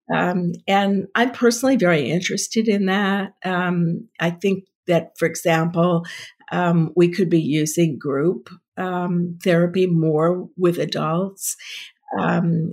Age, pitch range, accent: 50-69, 165-185 Hz, American